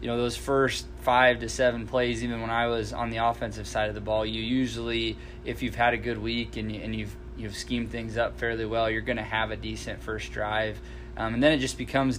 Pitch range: 110-120 Hz